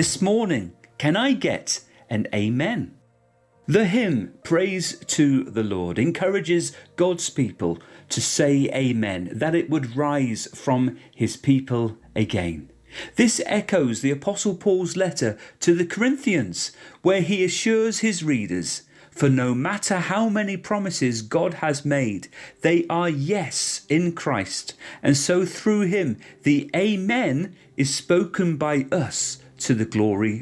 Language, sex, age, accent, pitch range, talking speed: English, male, 40-59, British, 125-190 Hz, 135 wpm